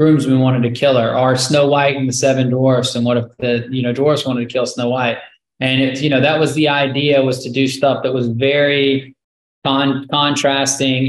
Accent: American